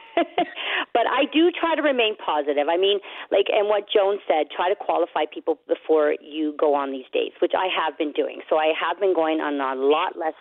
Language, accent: English, American